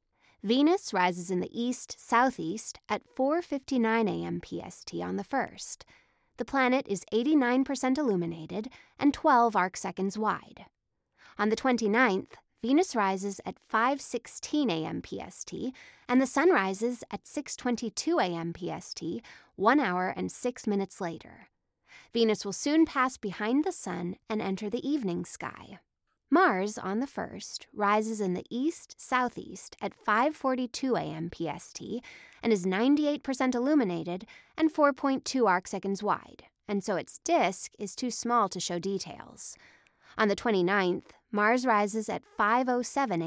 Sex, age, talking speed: female, 20-39, 130 wpm